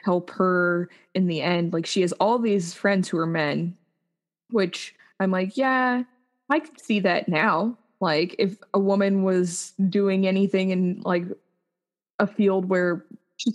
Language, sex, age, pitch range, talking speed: English, female, 20-39, 175-215 Hz, 160 wpm